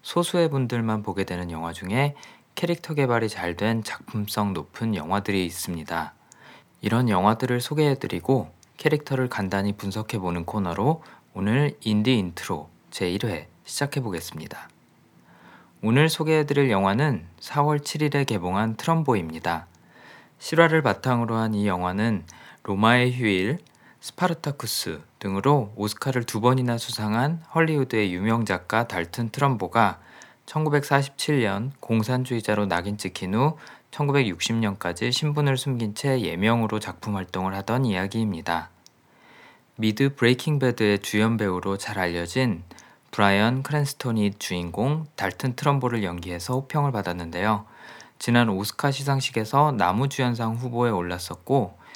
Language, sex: Korean, male